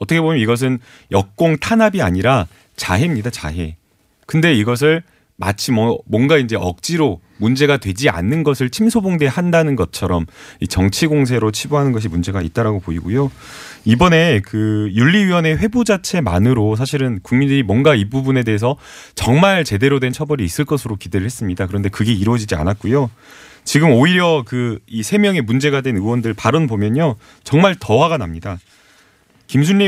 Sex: male